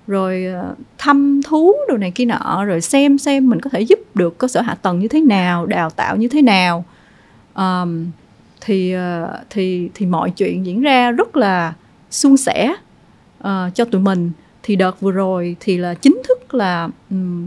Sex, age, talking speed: female, 20-39, 185 wpm